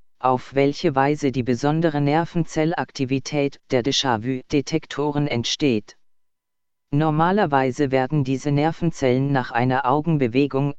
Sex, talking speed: female, 100 wpm